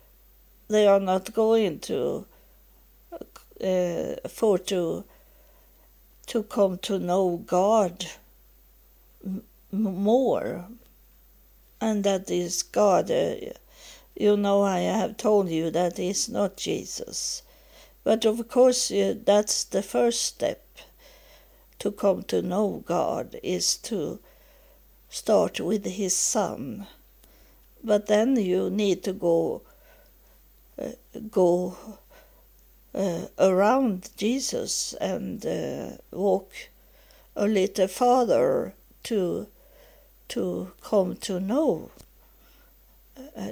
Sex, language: female, English